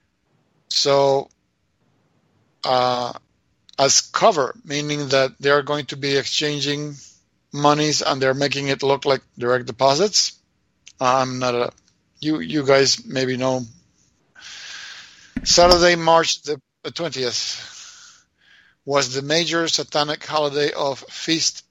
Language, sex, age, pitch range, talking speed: English, male, 50-69, 135-150 Hz, 110 wpm